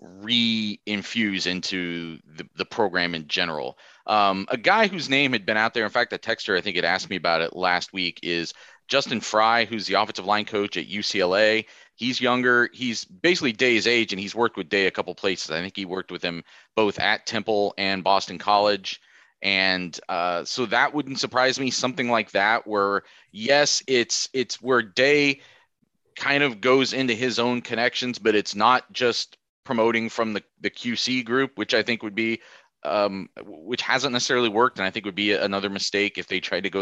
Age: 30-49